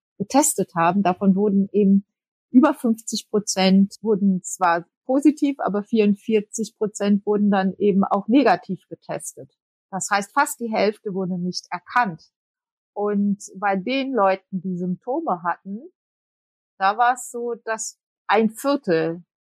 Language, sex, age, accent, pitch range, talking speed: German, female, 30-49, German, 180-210 Hz, 130 wpm